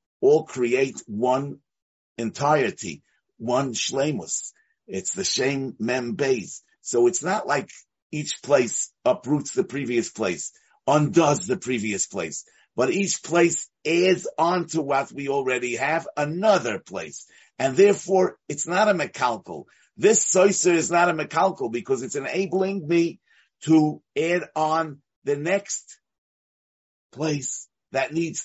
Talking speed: 125 wpm